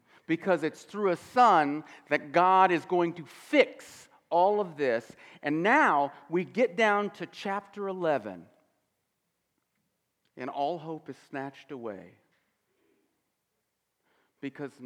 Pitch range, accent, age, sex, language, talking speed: 155-205 Hz, American, 50-69, male, English, 115 wpm